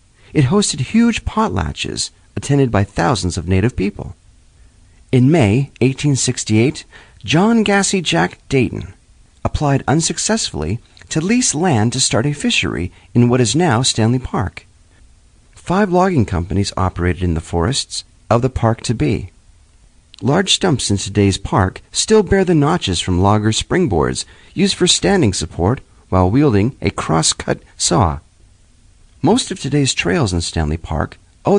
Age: 40-59